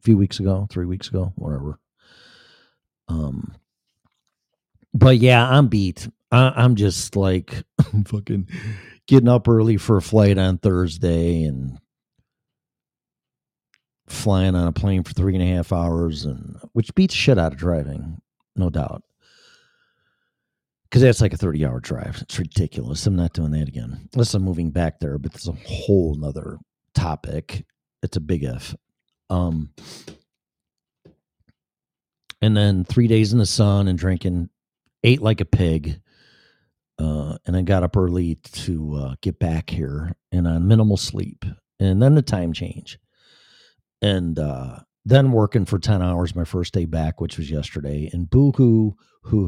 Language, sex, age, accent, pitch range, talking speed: English, male, 40-59, American, 85-110 Hz, 155 wpm